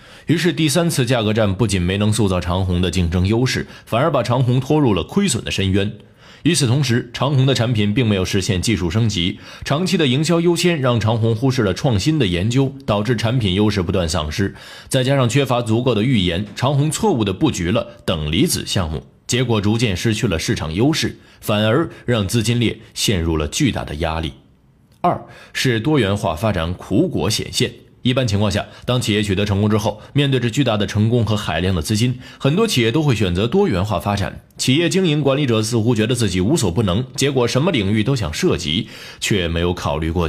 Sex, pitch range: male, 100-130 Hz